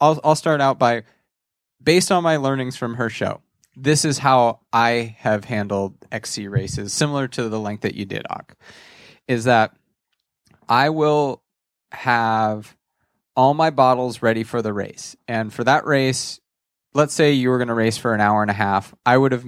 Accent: American